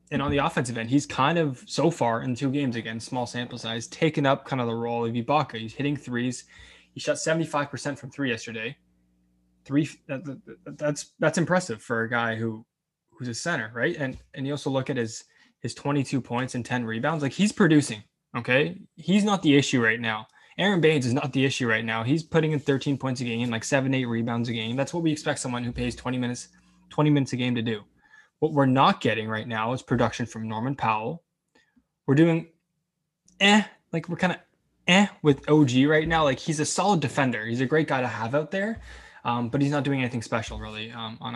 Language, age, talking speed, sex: English, 20-39, 220 wpm, male